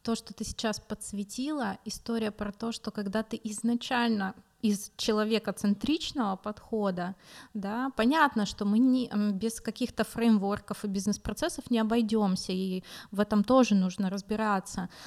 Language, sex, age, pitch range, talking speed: Russian, female, 20-39, 200-230 Hz, 135 wpm